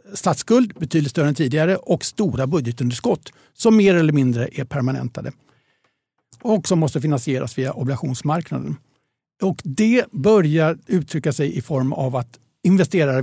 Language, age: Swedish, 60-79